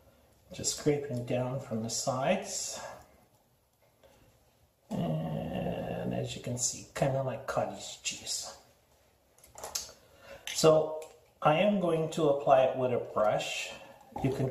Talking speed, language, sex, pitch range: 115 wpm, English, male, 120-145 Hz